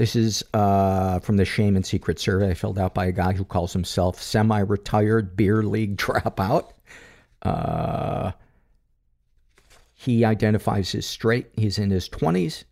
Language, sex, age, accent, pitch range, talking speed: English, male, 50-69, American, 95-110 Hz, 150 wpm